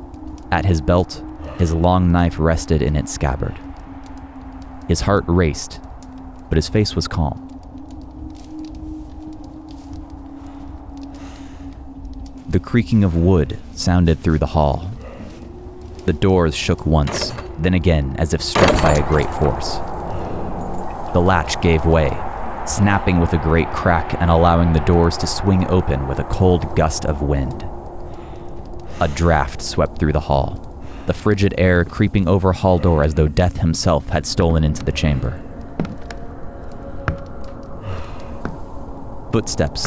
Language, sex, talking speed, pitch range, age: English, male, 125 wpm, 80-90 Hz, 30-49